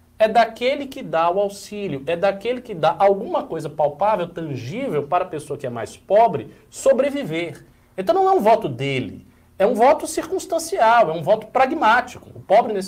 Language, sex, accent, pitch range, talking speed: Portuguese, male, Brazilian, 145-230 Hz, 180 wpm